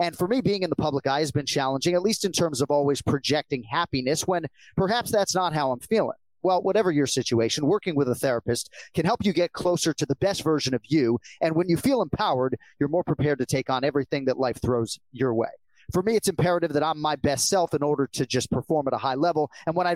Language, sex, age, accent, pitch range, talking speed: English, male, 30-49, American, 135-175 Hz, 250 wpm